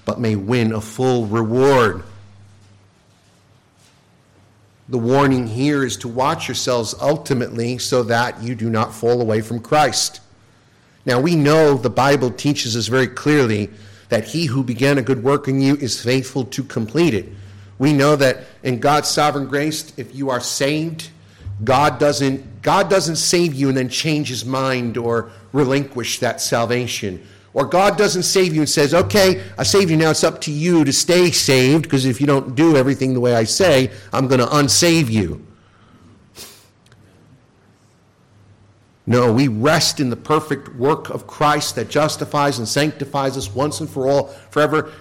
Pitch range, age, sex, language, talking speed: 115-150 Hz, 50-69, male, English, 165 wpm